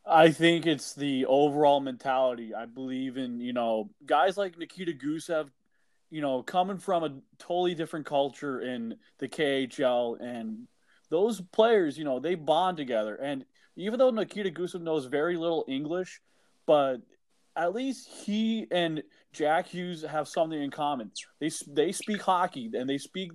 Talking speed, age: 155 wpm, 20-39